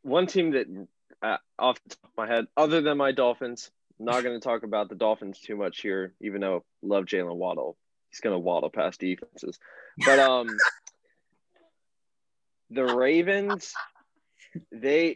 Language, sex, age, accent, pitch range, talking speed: English, male, 20-39, American, 110-130 Hz, 155 wpm